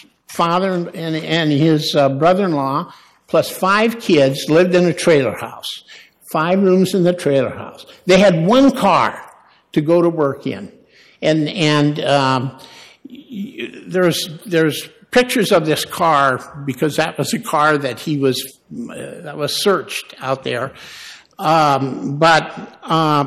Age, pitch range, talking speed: 60-79, 150-185 Hz, 135 wpm